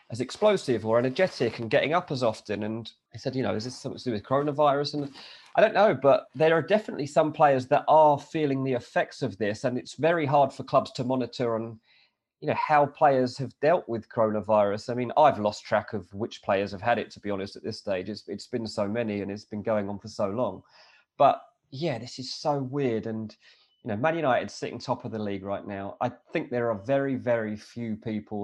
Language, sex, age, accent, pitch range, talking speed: English, male, 30-49, British, 110-140 Hz, 235 wpm